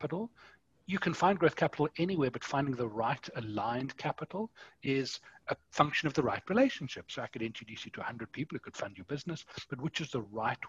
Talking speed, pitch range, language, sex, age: 210 wpm, 115-150 Hz, English, male, 40-59